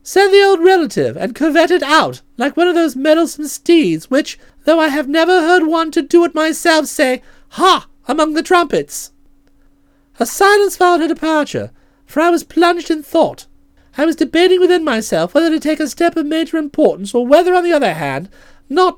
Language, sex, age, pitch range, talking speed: English, male, 40-59, 280-360 Hz, 195 wpm